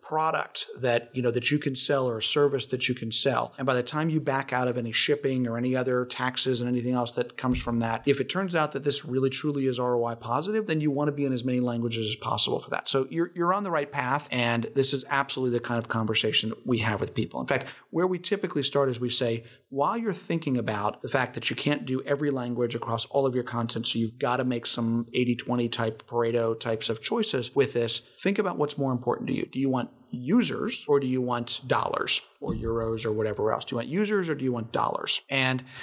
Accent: American